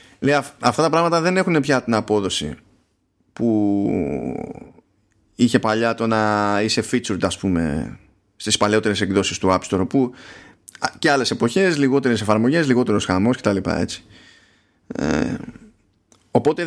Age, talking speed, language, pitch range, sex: 20-39, 130 wpm, Greek, 100-135 Hz, male